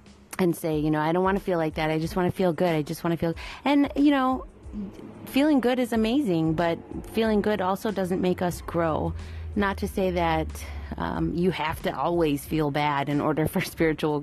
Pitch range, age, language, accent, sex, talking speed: 150-180 Hz, 30-49, English, American, female, 220 wpm